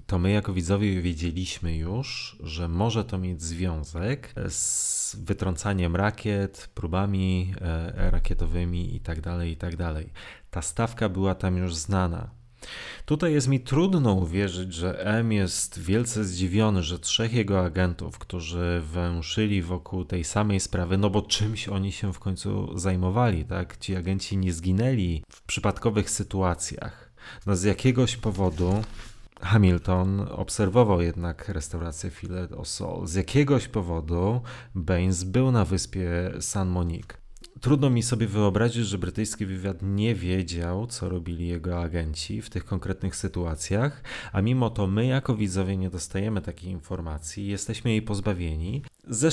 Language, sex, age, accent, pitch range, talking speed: Polish, male, 30-49, native, 90-110 Hz, 135 wpm